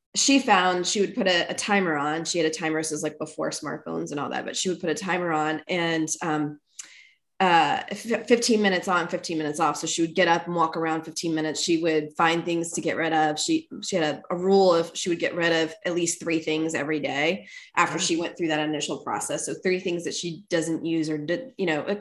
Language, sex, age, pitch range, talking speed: English, female, 20-39, 160-195 Hz, 255 wpm